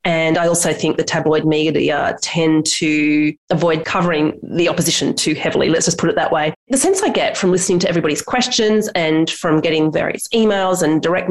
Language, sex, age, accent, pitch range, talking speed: English, female, 30-49, Australian, 160-215 Hz, 195 wpm